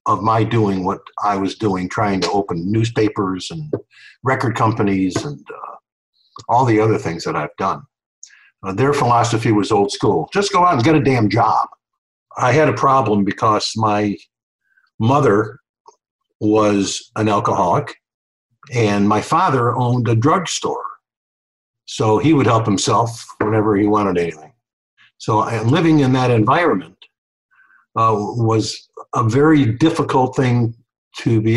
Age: 50-69